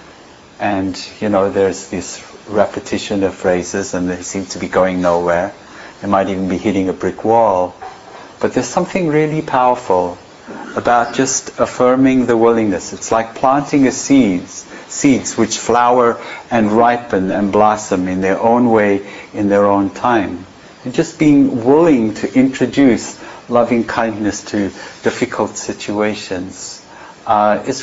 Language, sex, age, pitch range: English, male, 60-79, 100-135 Hz